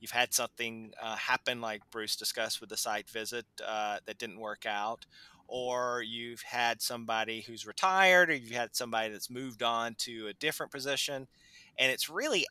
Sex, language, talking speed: male, English, 180 wpm